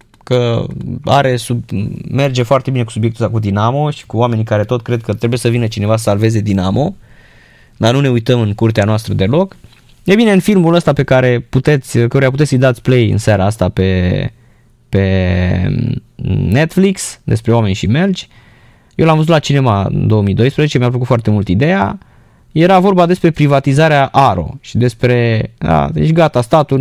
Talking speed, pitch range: 175 wpm, 115-150 Hz